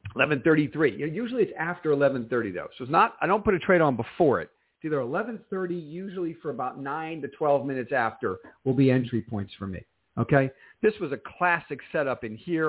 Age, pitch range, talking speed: 50-69, 130-180 Hz, 200 wpm